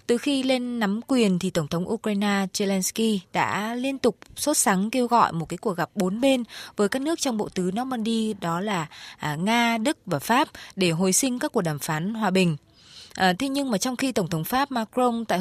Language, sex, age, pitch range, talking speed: Vietnamese, female, 20-39, 180-235 Hz, 220 wpm